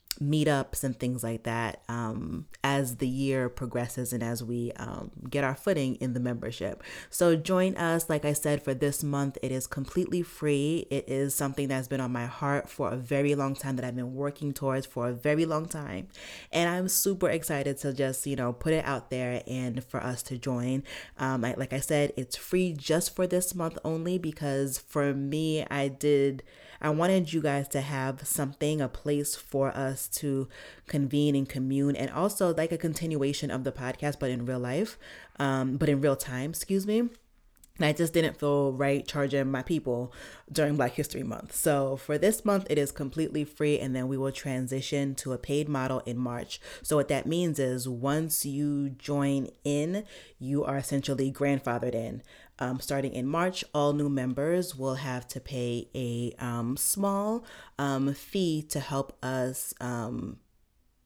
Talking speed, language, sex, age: 185 wpm, English, female, 30-49